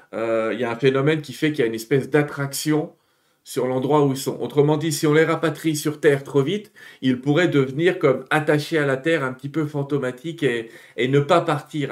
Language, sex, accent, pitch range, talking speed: French, male, French, 120-160 Hz, 230 wpm